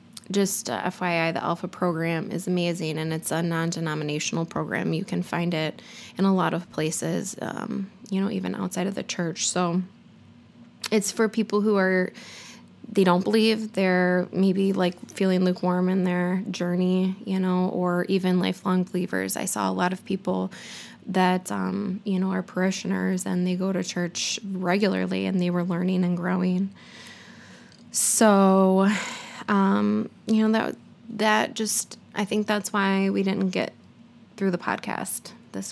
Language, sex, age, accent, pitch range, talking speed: English, female, 20-39, American, 180-205 Hz, 160 wpm